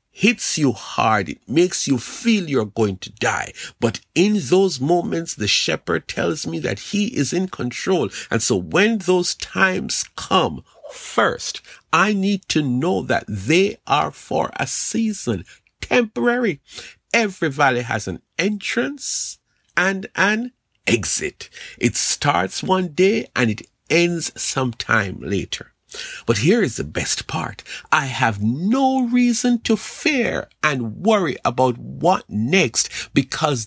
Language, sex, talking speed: English, male, 135 wpm